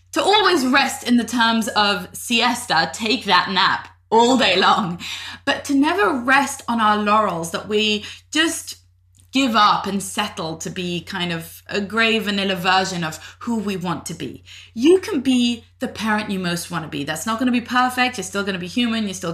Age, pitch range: 20-39, 180-255 Hz